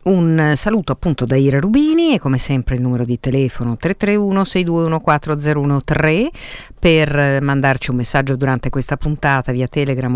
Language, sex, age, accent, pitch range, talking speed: Italian, female, 50-69, native, 125-170 Hz, 140 wpm